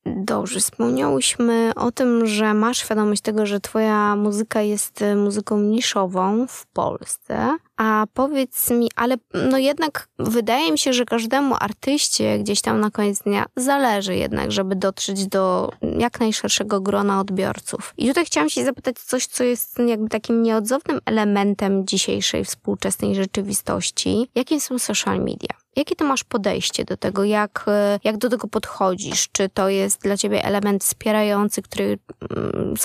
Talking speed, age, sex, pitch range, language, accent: 150 wpm, 20-39, female, 195-235 Hz, Polish, native